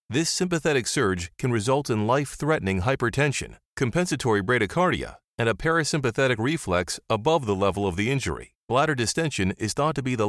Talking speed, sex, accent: 160 wpm, male, American